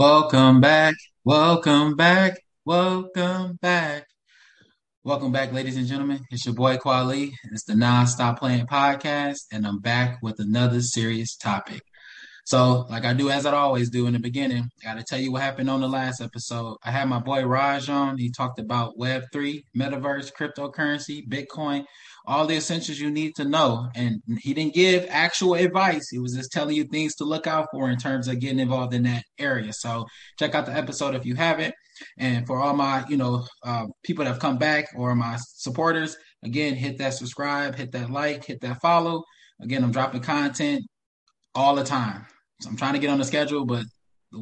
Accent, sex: American, male